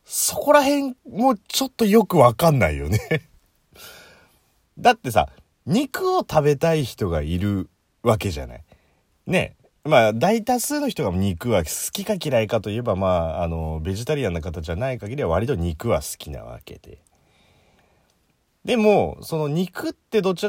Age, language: 30-49, Japanese